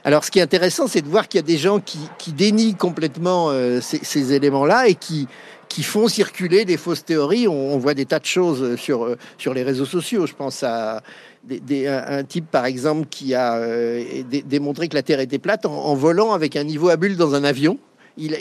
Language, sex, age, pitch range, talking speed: French, male, 50-69, 140-185 Hz, 235 wpm